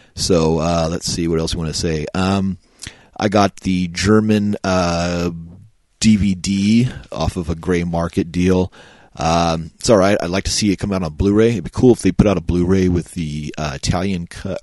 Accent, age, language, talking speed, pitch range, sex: American, 30-49, English, 205 wpm, 80-95 Hz, male